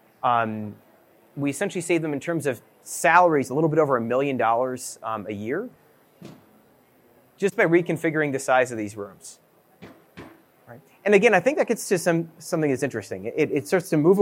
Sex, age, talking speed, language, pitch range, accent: male, 30-49, 185 wpm, English, 125-170 Hz, American